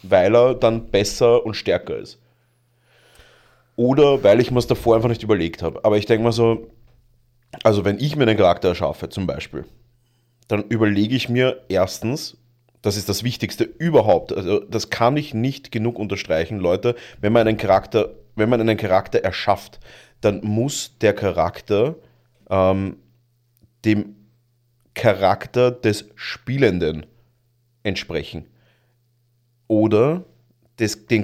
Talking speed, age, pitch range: 135 wpm, 30-49, 105-120 Hz